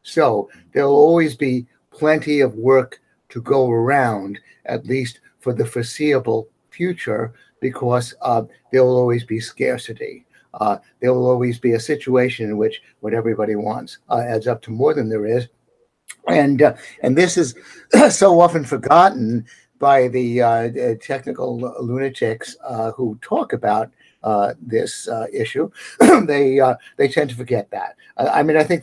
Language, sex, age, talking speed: English, male, 60-79, 160 wpm